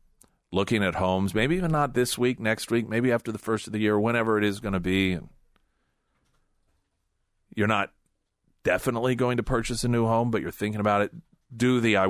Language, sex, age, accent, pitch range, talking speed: English, male, 40-59, American, 90-115 Hz, 200 wpm